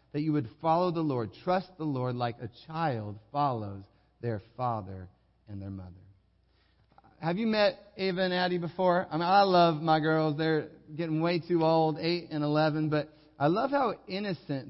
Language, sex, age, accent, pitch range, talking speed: English, male, 40-59, American, 145-180 Hz, 180 wpm